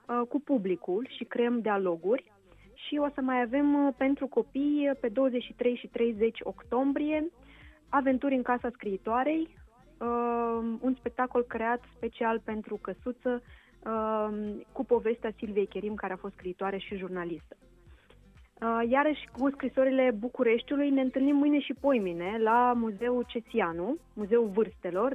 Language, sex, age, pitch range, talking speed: Romanian, female, 20-39, 220-265 Hz, 120 wpm